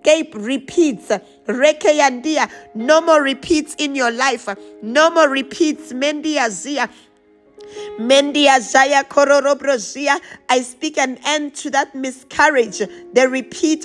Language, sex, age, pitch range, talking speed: English, female, 50-69, 250-305 Hz, 85 wpm